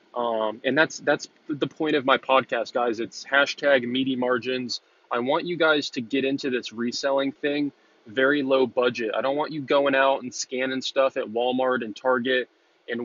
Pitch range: 125-140 Hz